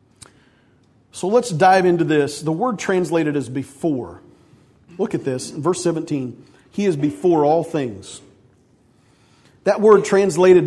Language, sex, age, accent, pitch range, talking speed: English, male, 40-59, American, 160-220 Hz, 130 wpm